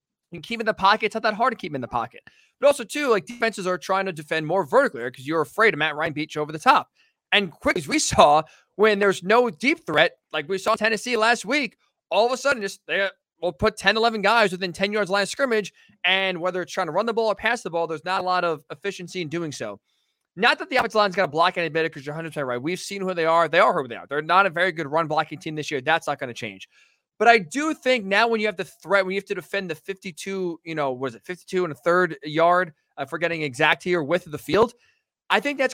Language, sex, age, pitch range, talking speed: English, male, 20-39, 170-220 Hz, 285 wpm